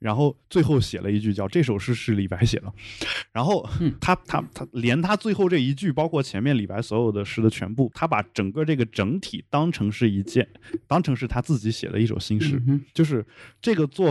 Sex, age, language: male, 20-39, Chinese